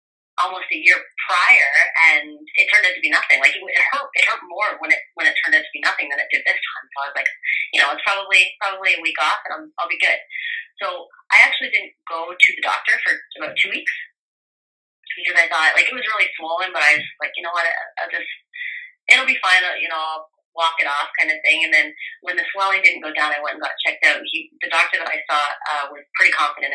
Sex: female